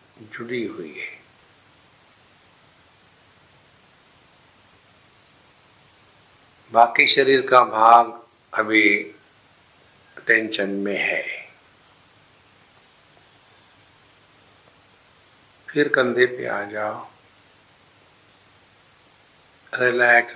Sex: male